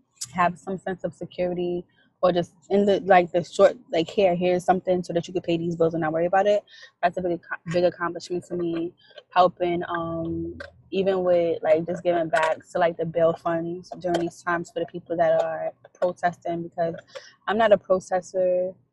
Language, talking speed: English, 195 wpm